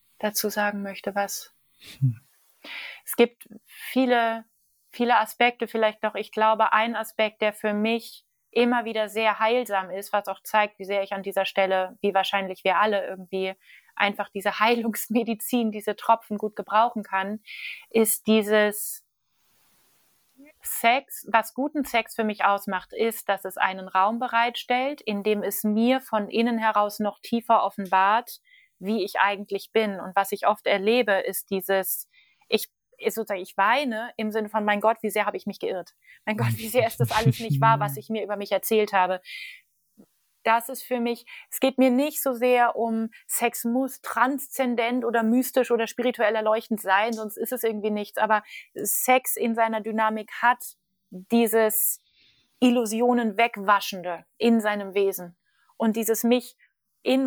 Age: 20-39